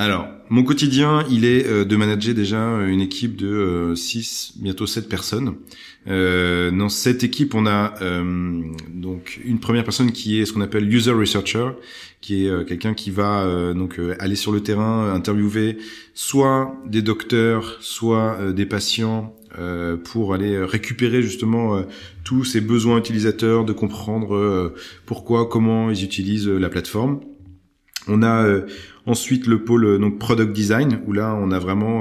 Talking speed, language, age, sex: 140 wpm, French, 30-49, male